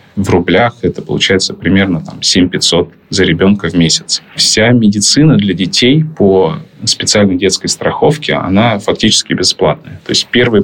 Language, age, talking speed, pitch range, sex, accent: Russian, 20-39, 140 wpm, 85-105 Hz, male, native